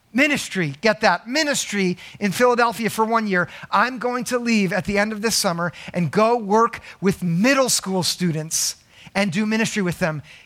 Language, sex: English, male